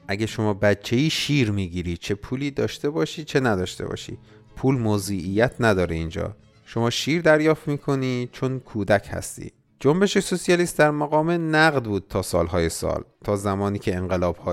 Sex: male